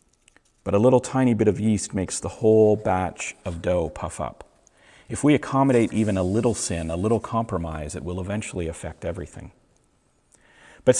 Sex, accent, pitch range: male, American, 100-130 Hz